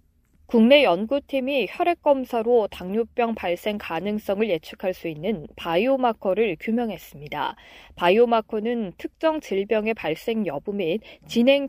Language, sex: Korean, female